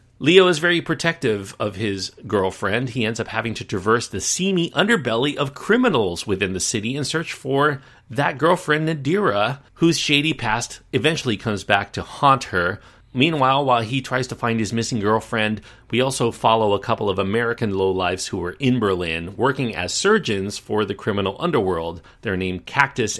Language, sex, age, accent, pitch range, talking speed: English, male, 40-59, American, 95-130 Hz, 175 wpm